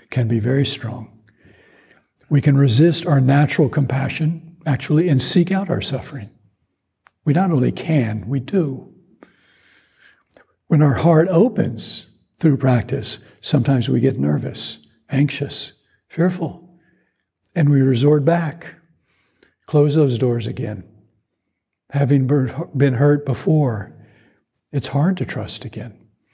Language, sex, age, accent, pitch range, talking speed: English, male, 60-79, American, 115-145 Hz, 115 wpm